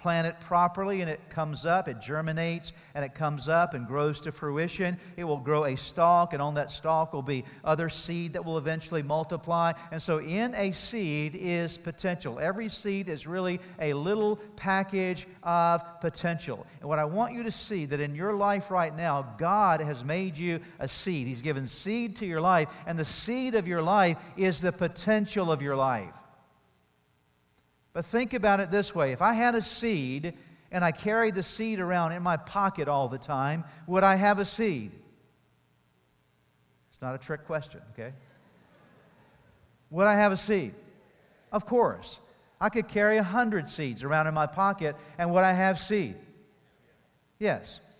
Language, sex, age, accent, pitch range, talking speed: English, male, 50-69, American, 150-200 Hz, 180 wpm